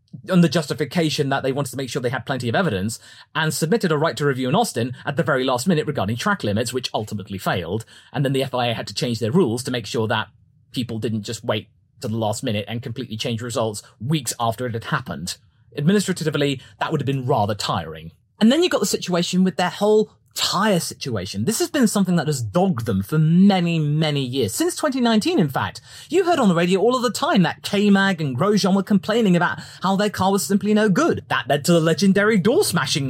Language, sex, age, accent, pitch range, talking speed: English, male, 30-49, British, 120-195 Hz, 230 wpm